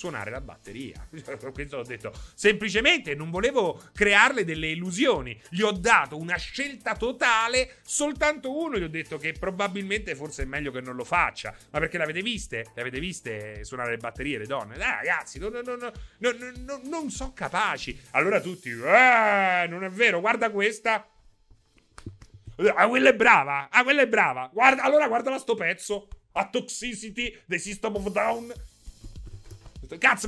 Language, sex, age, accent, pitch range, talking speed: Italian, male, 30-49, native, 130-215 Hz, 170 wpm